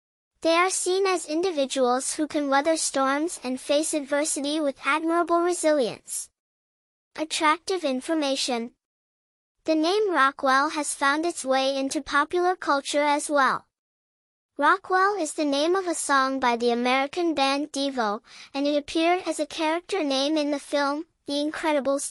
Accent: American